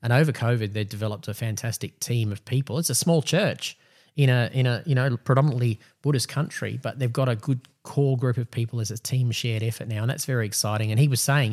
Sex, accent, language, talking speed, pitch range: male, Australian, English, 240 wpm, 110-135 Hz